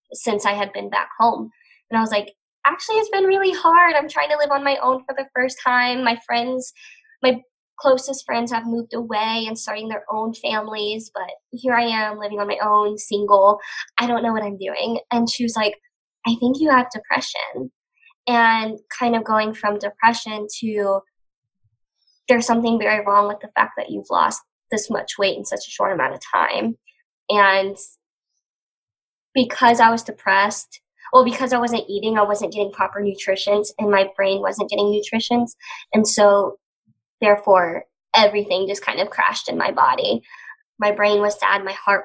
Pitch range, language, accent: 200-240 Hz, English, American